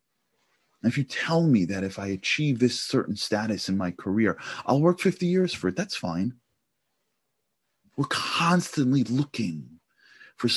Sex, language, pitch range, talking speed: male, English, 90-125 Hz, 155 wpm